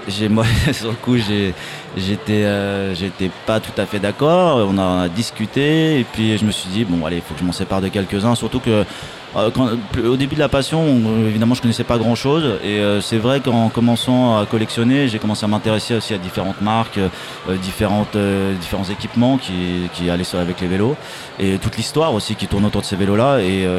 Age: 30-49